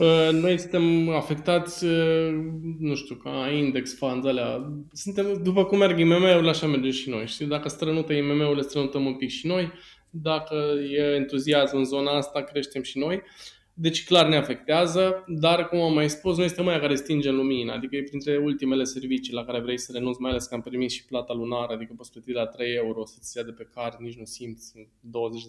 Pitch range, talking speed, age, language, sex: 125-155 Hz, 195 wpm, 20-39, Romanian, male